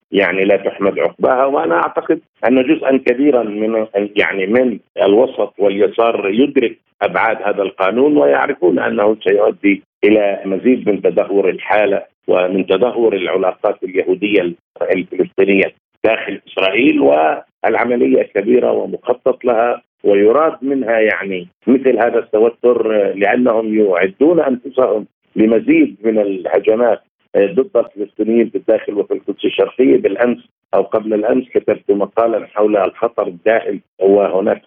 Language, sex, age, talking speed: Arabic, male, 50-69, 115 wpm